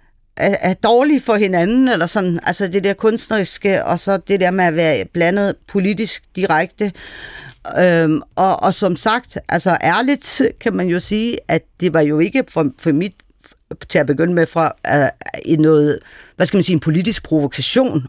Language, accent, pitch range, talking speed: Danish, native, 150-195 Hz, 175 wpm